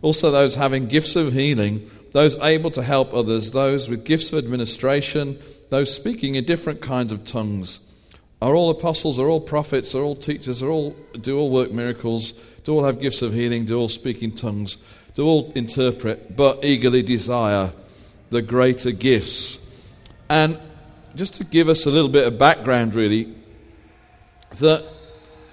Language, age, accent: English, 40-59, British